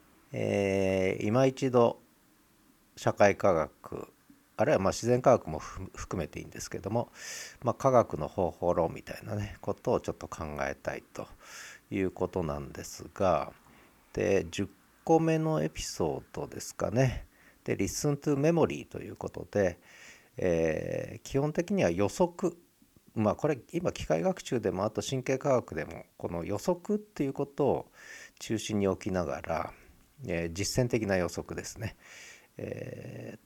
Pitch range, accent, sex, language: 95-155 Hz, native, male, Japanese